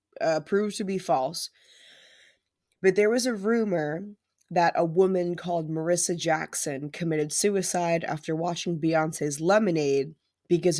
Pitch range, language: 155-185 Hz, English